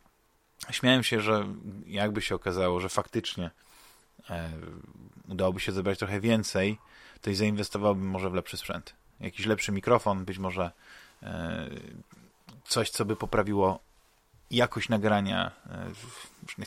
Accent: native